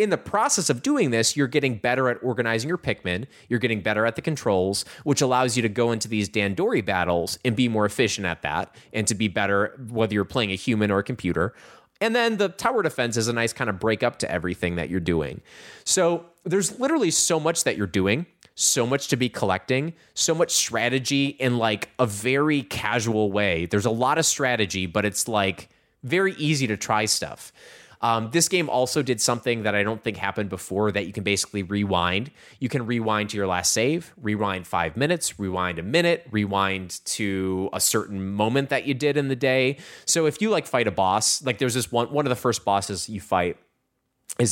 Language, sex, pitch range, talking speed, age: English, male, 100-140 Hz, 210 wpm, 20-39